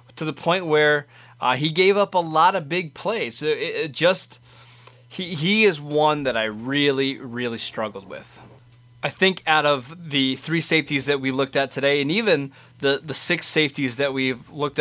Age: 20-39